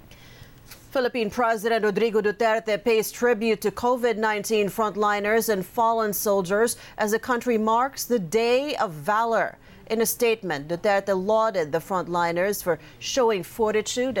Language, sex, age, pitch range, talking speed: English, female, 40-59, 180-225 Hz, 125 wpm